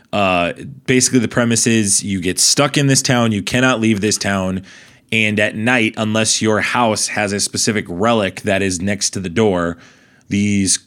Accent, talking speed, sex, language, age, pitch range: American, 180 wpm, male, English, 20-39, 95-125 Hz